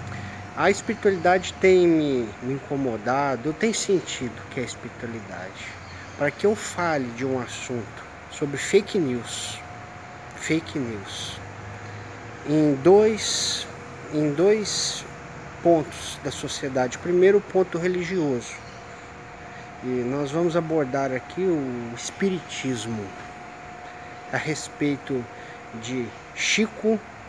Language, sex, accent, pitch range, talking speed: Portuguese, male, Brazilian, 120-170 Hz, 95 wpm